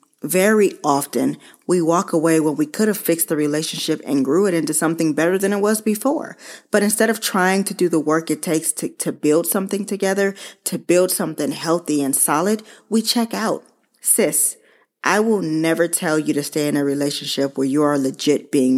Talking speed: 200 wpm